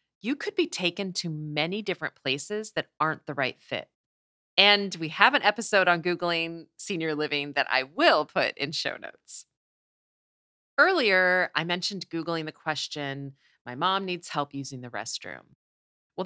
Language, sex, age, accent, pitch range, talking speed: English, female, 30-49, American, 145-205 Hz, 160 wpm